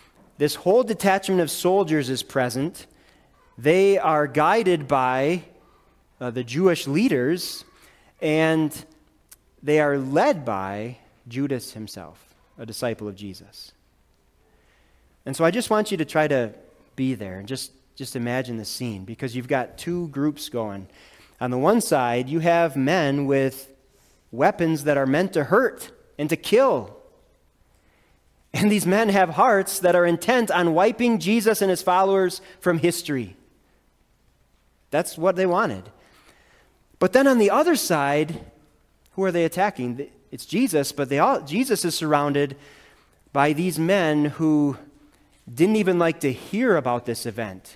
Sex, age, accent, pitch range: male, 30-49, American, 130-185 Hz